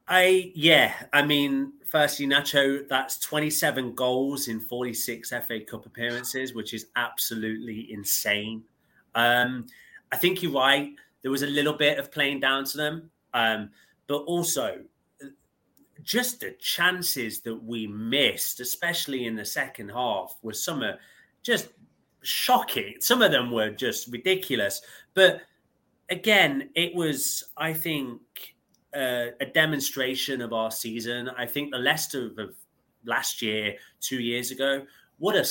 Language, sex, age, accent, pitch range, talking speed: English, male, 30-49, British, 120-150 Hz, 135 wpm